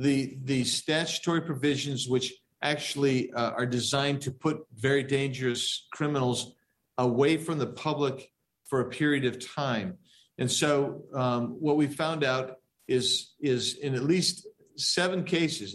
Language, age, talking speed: English, 50-69, 140 wpm